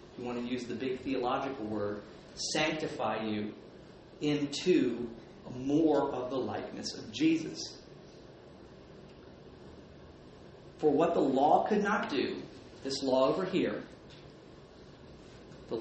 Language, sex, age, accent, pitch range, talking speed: English, male, 40-59, American, 130-190 Hz, 110 wpm